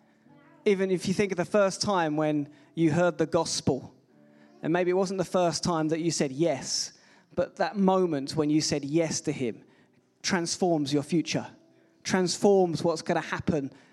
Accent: British